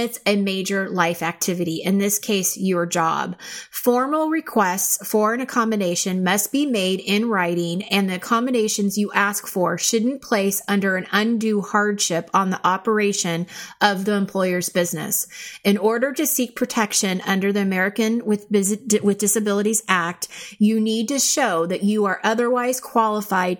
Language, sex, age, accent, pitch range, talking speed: English, female, 30-49, American, 190-230 Hz, 150 wpm